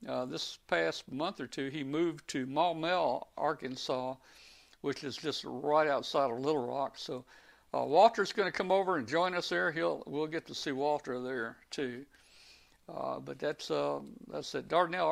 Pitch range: 135-170 Hz